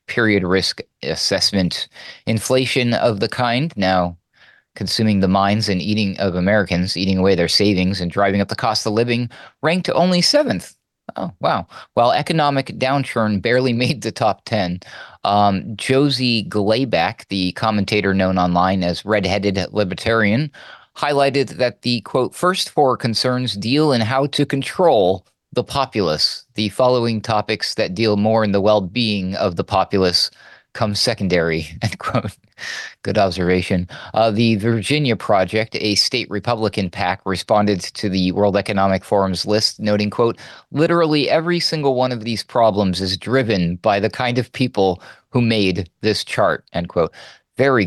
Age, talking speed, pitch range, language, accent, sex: 30-49, 150 wpm, 95-125 Hz, English, American, male